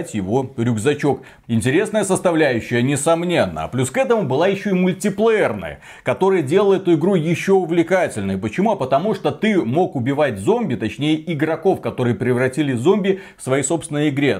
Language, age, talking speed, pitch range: Russian, 30-49, 145 wpm, 115-175 Hz